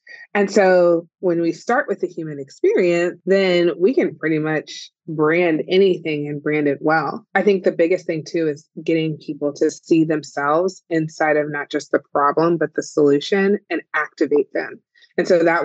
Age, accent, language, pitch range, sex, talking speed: 30-49, American, English, 145-170 Hz, female, 180 wpm